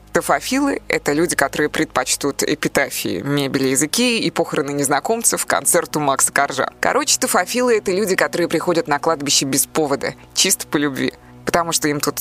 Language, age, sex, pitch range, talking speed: Russian, 20-39, female, 145-175 Hz, 150 wpm